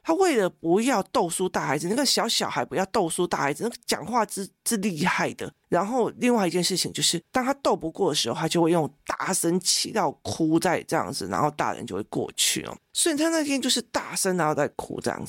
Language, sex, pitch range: Chinese, male, 165-225 Hz